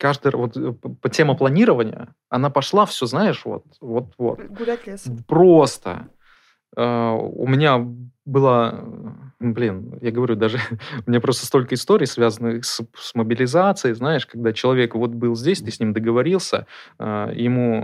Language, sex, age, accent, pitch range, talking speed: Russian, male, 20-39, native, 115-145 Hz, 125 wpm